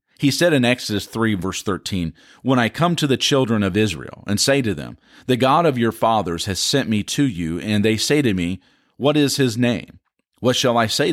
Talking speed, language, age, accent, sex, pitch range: 225 wpm, English, 40-59, American, male, 95-130 Hz